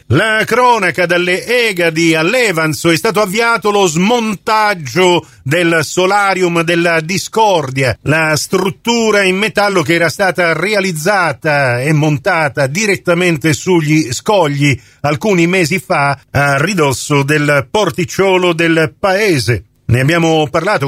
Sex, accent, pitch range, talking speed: male, native, 140-190 Hz, 110 wpm